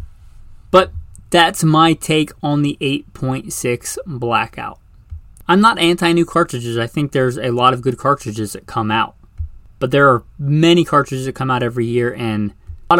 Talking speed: 160 wpm